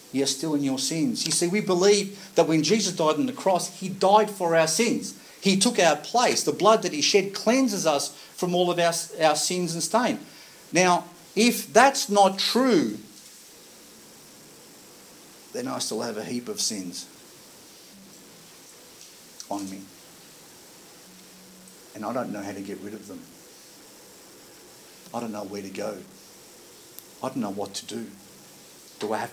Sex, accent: male, Australian